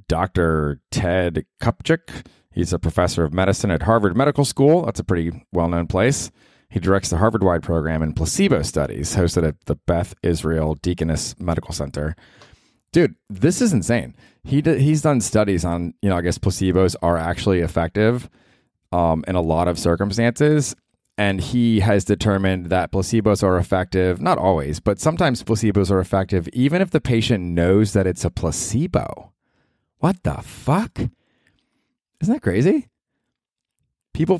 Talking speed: 155 wpm